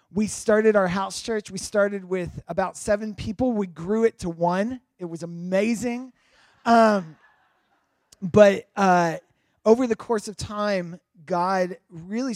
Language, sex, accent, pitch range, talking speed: English, male, American, 170-205 Hz, 140 wpm